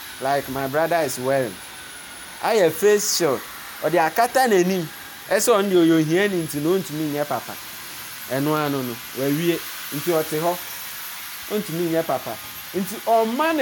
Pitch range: 155-210 Hz